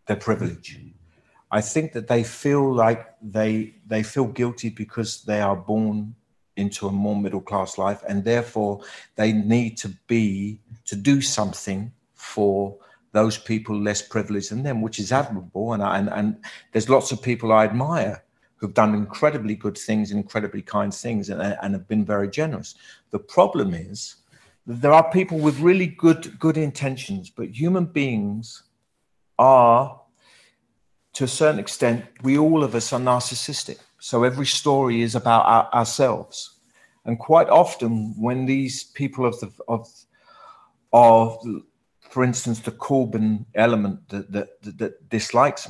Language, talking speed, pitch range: English, 155 wpm, 105-130 Hz